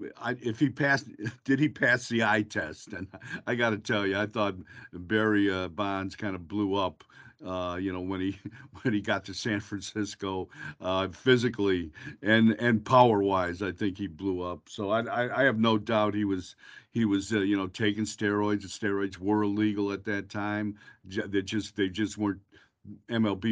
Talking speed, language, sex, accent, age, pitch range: 195 wpm, English, male, American, 50-69, 100-125 Hz